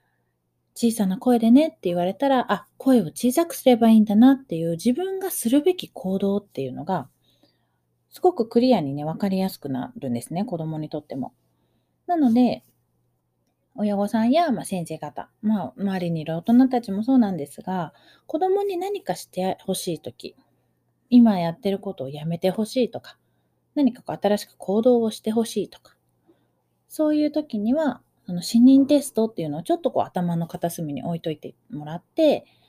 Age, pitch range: 30-49, 170-250 Hz